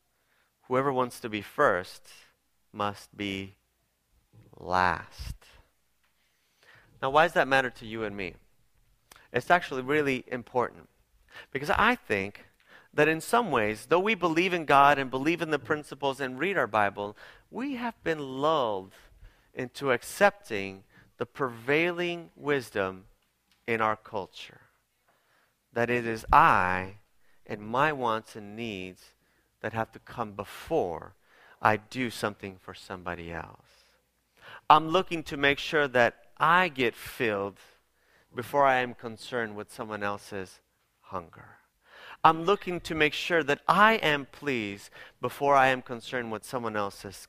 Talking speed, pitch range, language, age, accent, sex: 135 wpm, 105-150 Hz, English, 30-49, American, male